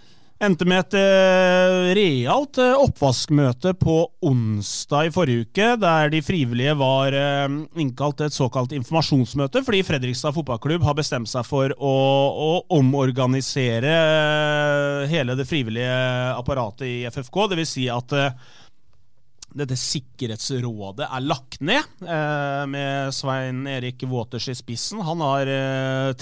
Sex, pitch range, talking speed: male, 130-155 Hz, 130 wpm